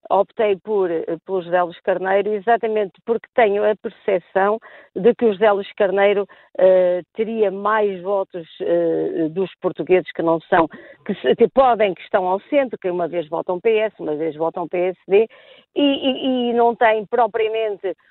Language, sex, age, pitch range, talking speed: Portuguese, female, 50-69, 185-240 Hz, 160 wpm